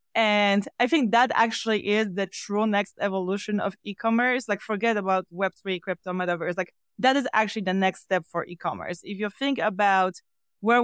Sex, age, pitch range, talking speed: female, 20-39, 180-220 Hz, 175 wpm